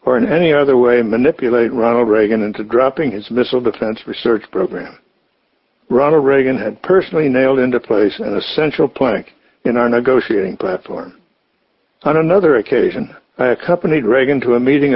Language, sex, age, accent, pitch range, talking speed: English, male, 60-79, American, 120-160 Hz, 155 wpm